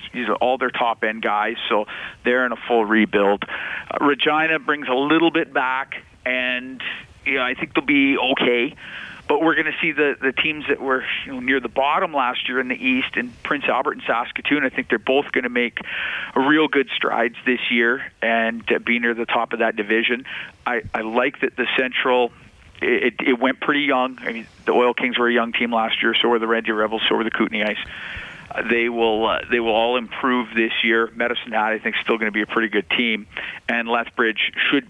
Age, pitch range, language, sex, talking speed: 40-59, 110-125 Hz, English, male, 220 wpm